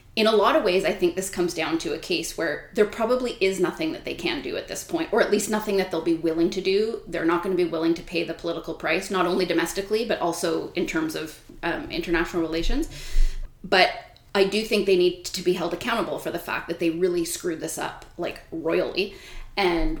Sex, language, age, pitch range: female, English, 20-39, 170-205 Hz